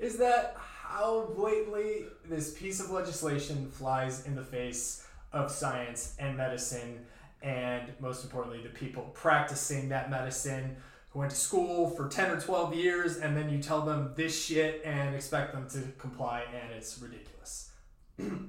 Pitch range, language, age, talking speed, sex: 130-165 Hz, English, 20-39, 155 wpm, male